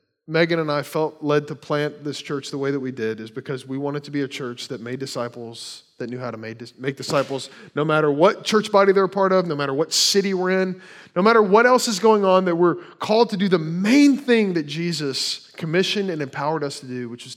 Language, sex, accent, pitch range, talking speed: English, male, American, 140-185 Hz, 245 wpm